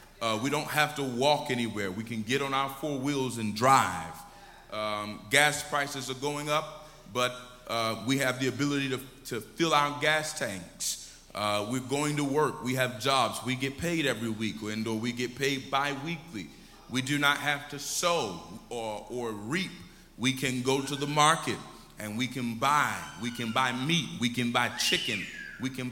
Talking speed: 190 wpm